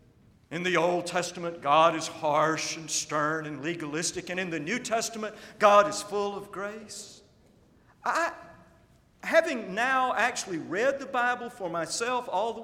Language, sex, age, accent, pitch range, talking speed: English, male, 50-69, American, 160-255 Hz, 150 wpm